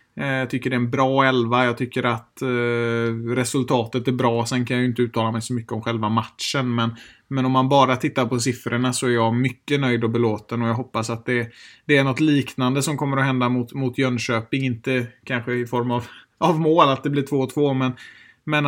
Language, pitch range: Swedish, 120-140 Hz